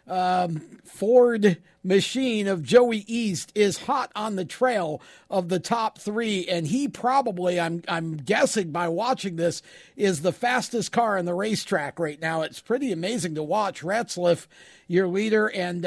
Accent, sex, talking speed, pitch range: American, male, 160 wpm, 175-220 Hz